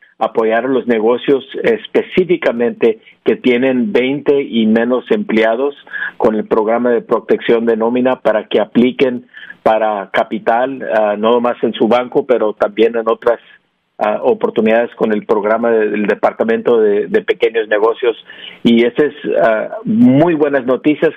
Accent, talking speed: Mexican, 135 wpm